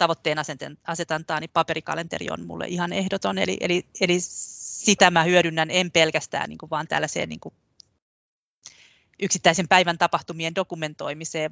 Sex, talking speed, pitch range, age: female, 120 wpm, 155-180 Hz, 30-49